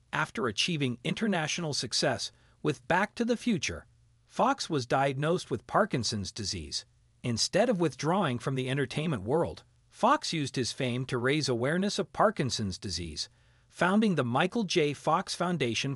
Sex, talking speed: male, 145 wpm